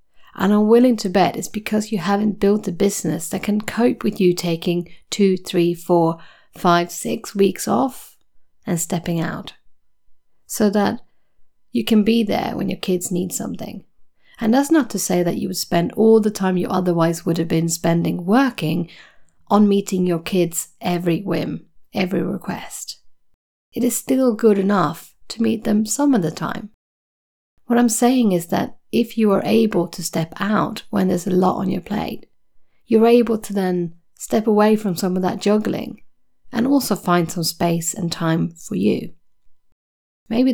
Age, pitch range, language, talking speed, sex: 30-49, 175-220 Hz, English, 175 wpm, female